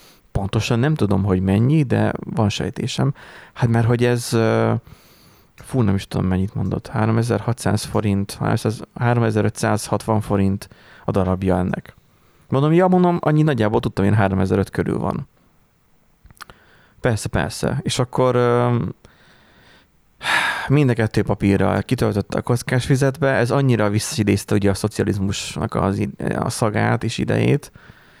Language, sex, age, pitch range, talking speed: Hungarian, male, 30-49, 100-120 Hz, 120 wpm